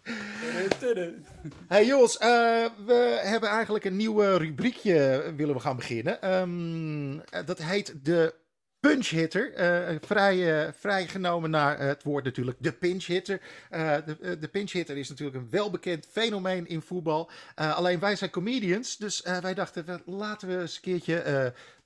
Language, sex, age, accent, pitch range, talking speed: Dutch, male, 50-69, Dutch, 155-205 Hz, 160 wpm